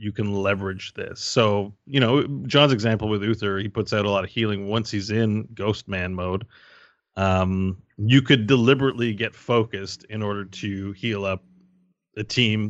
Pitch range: 105-130 Hz